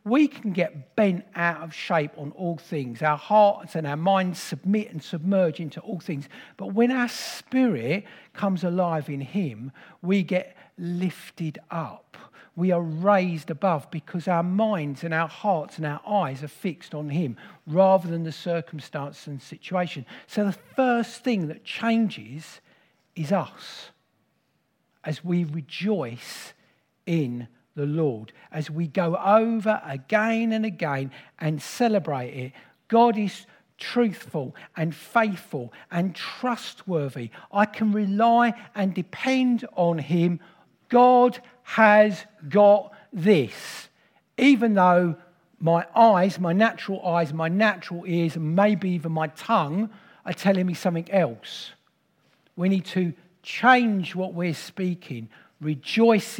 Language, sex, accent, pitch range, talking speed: English, male, British, 160-210 Hz, 135 wpm